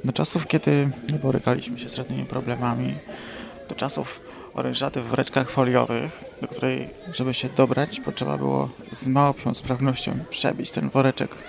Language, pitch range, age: Polish, 125-150 Hz, 20-39